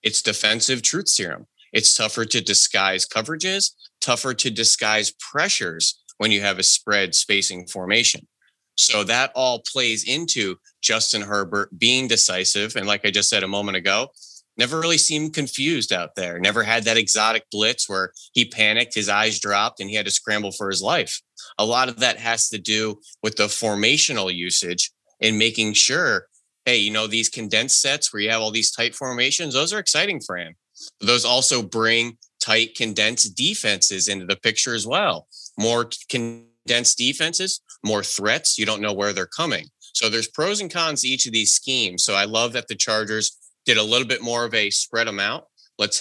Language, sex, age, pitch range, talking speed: English, male, 30-49, 105-120 Hz, 185 wpm